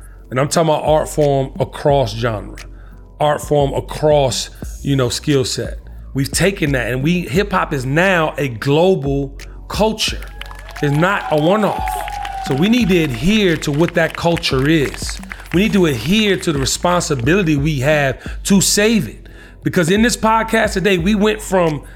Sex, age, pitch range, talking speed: male, 40-59, 130-185 Hz, 165 wpm